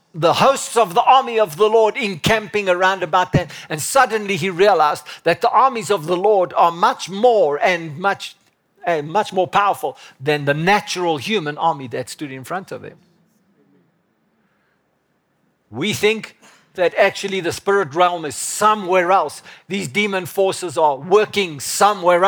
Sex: male